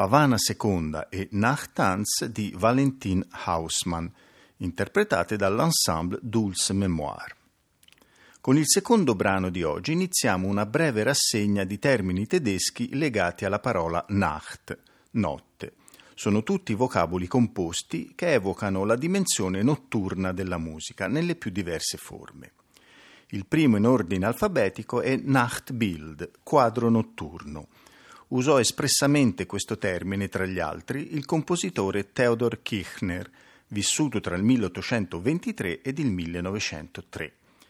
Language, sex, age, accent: Italian, male, 50-69, native